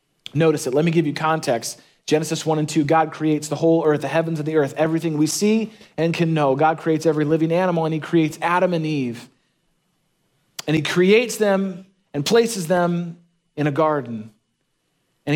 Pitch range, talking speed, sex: 135-170 Hz, 190 wpm, male